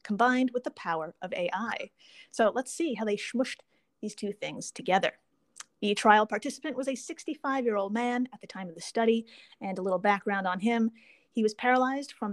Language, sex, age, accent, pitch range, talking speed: English, female, 30-49, American, 205-260 Hz, 190 wpm